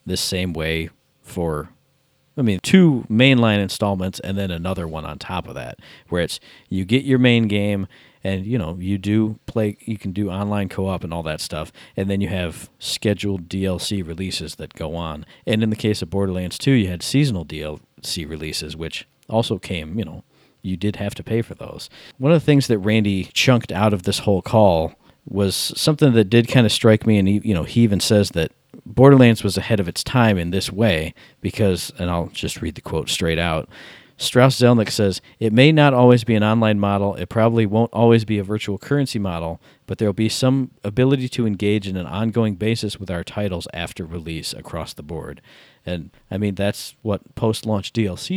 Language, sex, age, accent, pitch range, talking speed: English, male, 40-59, American, 95-115 Hz, 205 wpm